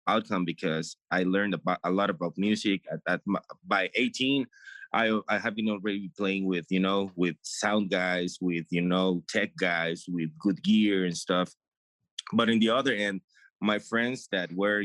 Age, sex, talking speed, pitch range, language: 20-39, male, 190 wpm, 90-115 Hz, English